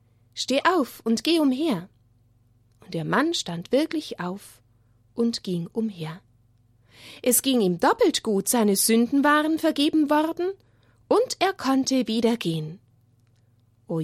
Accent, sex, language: German, female, German